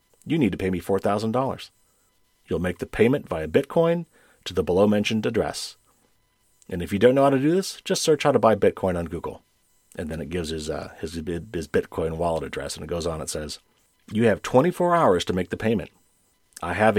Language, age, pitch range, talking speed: English, 40-59, 95-140 Hz, 215 wpm